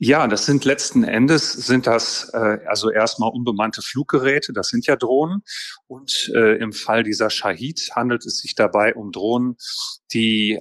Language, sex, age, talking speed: German, male, 30-49, 165 wpm